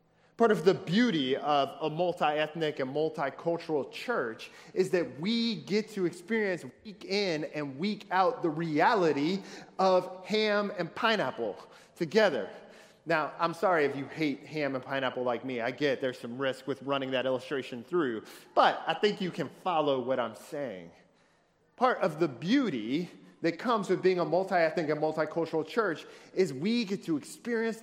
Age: 30-49